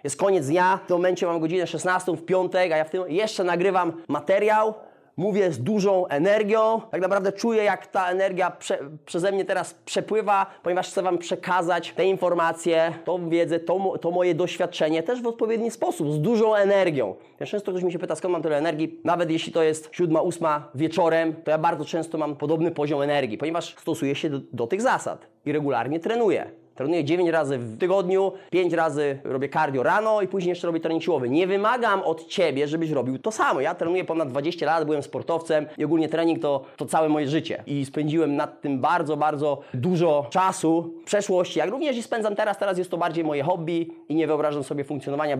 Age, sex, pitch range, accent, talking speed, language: 20-39, male, 155-185 Hz, native, 200 wpm, Polish